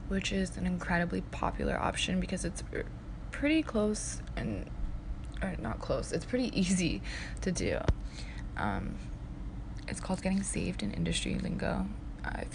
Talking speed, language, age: 135 wpm, English, 20-39